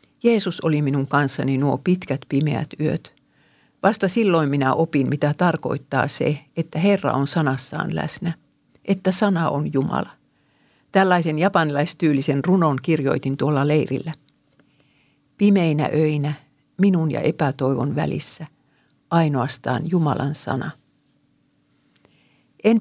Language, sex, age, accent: Finnish, female, 50-69, native